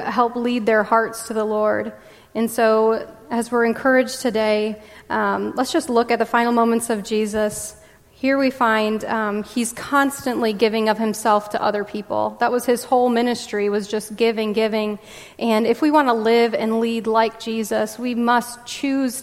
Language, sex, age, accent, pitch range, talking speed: English, female, 30-49, American, 210-240 Hz, 180 wpm